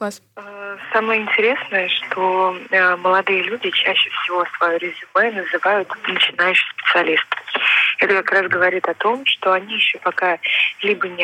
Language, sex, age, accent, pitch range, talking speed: Russian, female, 20-39, native, 175-205 Hz, 130 wpm